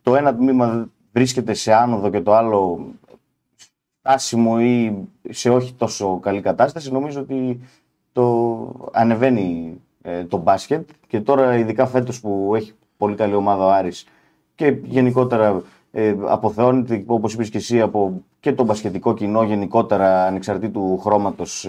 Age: 30-49